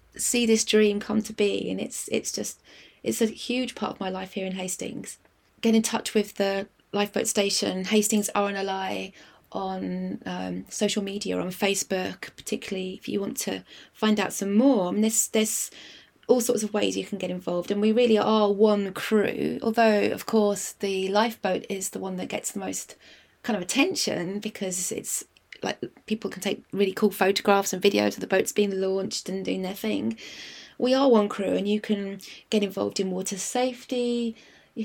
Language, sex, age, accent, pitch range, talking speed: English, female, 20-39, British, 195-225 Hz, 190 wpm